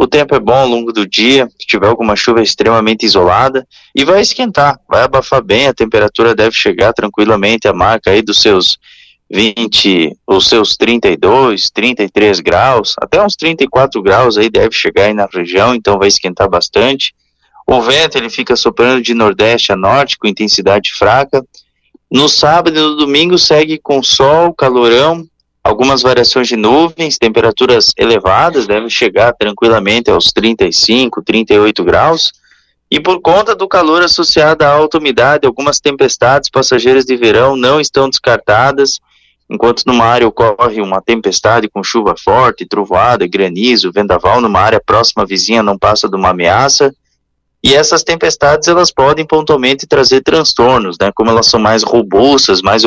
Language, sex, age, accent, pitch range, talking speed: Portuguese, male, 20-39, Brazilian, 110-145 Hz, 155 wpm